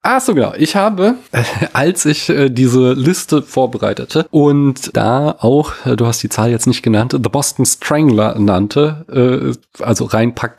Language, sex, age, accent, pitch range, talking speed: German, male, 30-49, German, 120-155 Hz, 170 wpm